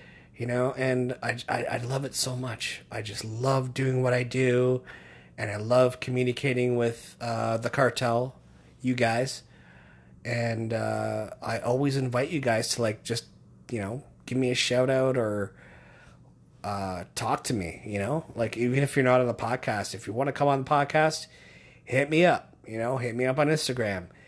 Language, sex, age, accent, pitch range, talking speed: English, male, 30-49, American, 115-135 Hz, 190 wpm